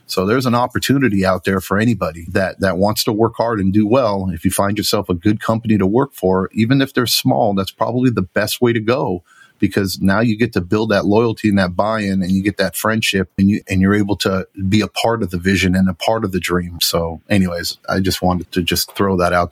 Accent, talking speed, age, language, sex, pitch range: American, 255 wpm, 40-59, English, male, 95-115 Hz